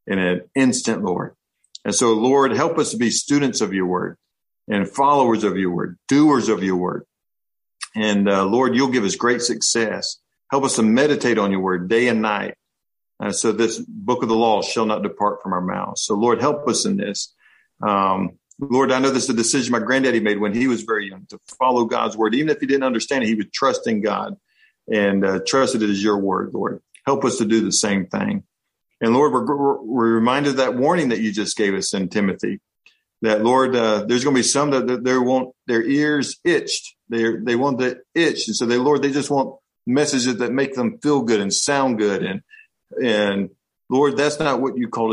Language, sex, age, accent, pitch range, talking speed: English, male, 50-69, American, 105-130 Hz, 220 wpm